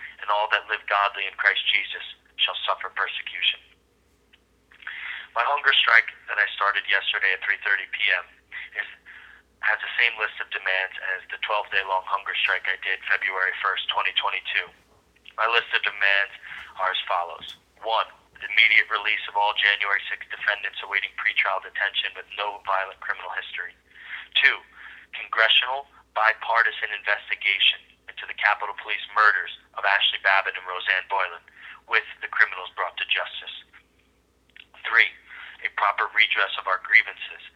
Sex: male